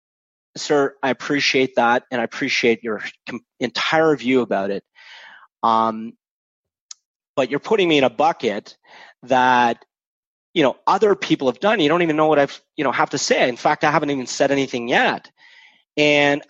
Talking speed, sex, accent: 170 wpm, male, American